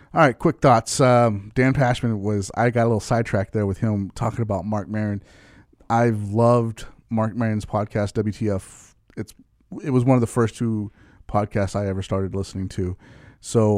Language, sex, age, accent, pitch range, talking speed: English, male, 30-49, American, 100-115 Hz, 180 wpm